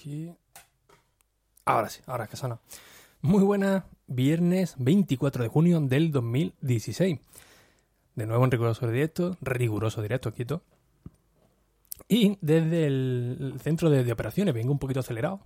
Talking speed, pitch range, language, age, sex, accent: 130 wpm, 120-150 Hz, Spanish, 20-39, male, Spanish